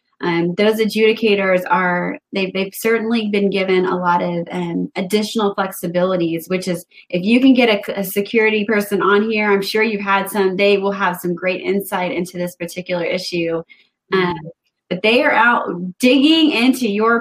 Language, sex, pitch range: English, female, 180-220 Hz